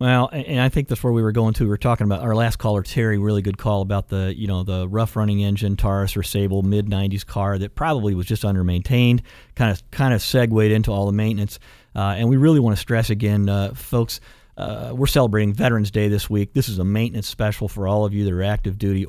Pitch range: 100-120 Hz